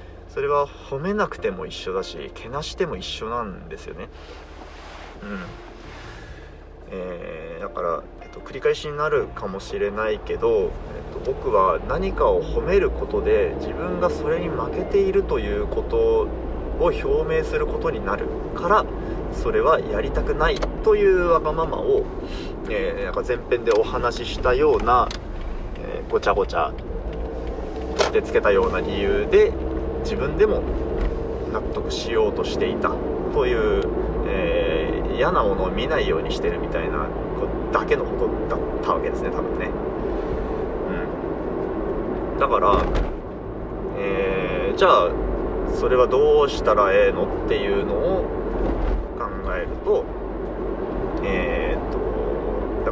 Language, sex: Japanese, male